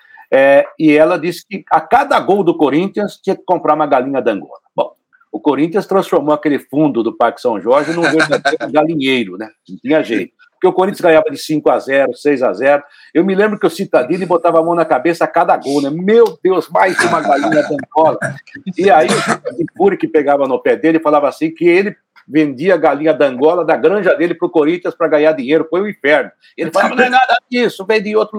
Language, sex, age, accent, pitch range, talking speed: Portuguese, male, 60-79, Brazilian, 150-205 Hz, 220 wpm